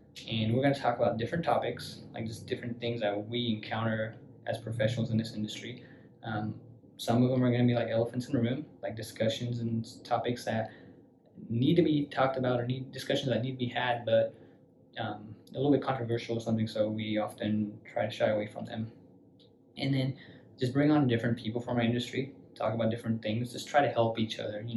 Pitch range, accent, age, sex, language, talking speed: 110-120 Hz, American, 20-39, male, English, 215 wpm